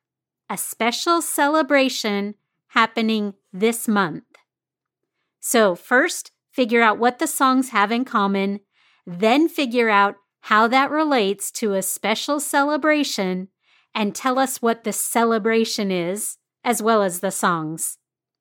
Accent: American